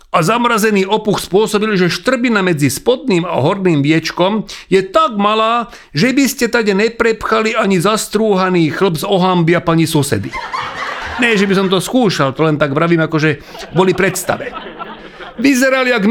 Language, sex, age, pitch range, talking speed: Slovak, male, 40-59, 150-200 Hz, 155 wpm